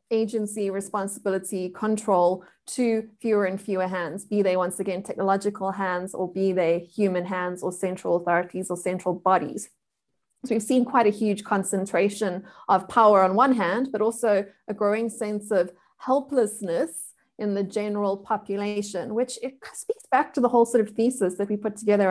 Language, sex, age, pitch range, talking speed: English, female, 20-39, 190-230 Hz, 170 wpm